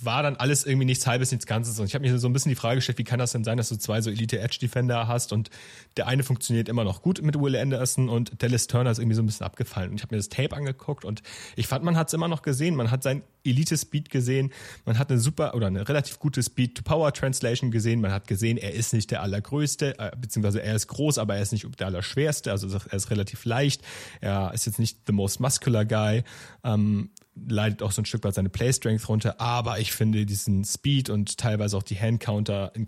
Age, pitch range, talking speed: 30-49, 105-130 Hz, 240 wpm